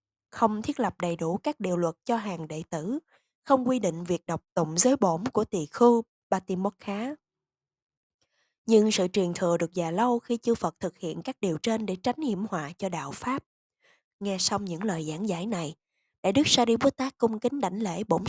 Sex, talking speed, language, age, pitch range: female, 215 wpm, Vietnamese, 20-39, 170-250 Hz